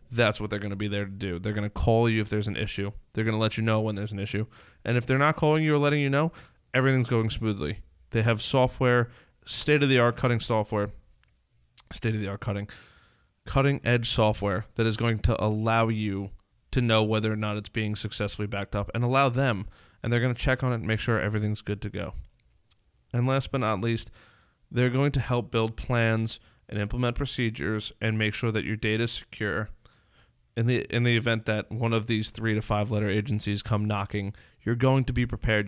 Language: English